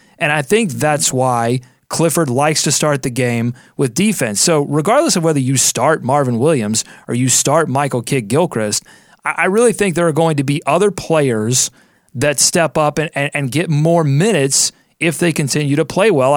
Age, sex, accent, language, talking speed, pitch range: 30-49, male, American, English, 190 wpm, 140-175 Hz